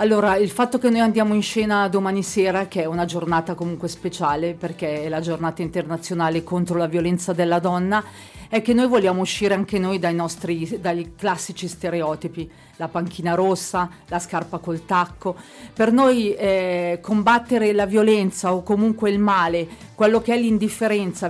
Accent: native